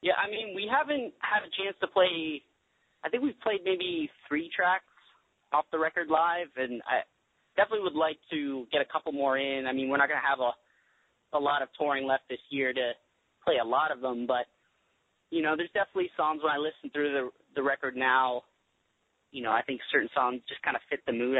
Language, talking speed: English, 220 wpm